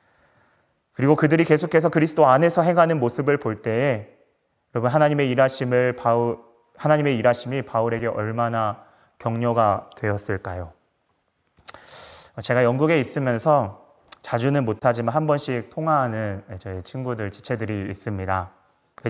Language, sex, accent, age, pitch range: Korean, male, native, 30-49, 110-135 Hz